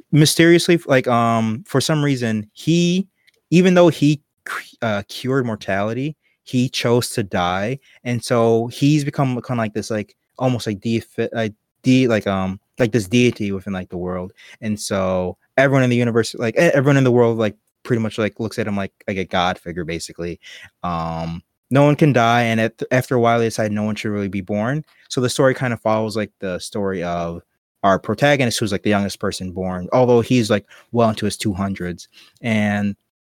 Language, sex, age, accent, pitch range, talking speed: English, male, 20-39, American, 100-130 Hz, 190 wpm